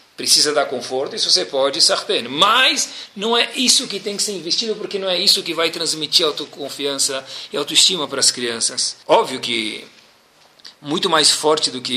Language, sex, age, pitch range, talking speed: Portuguese, male, 40-59, 135-195 Hz, 180 wpm